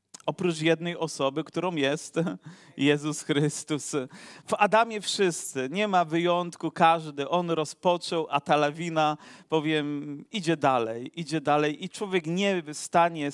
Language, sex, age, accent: Polish, male, 40-59, native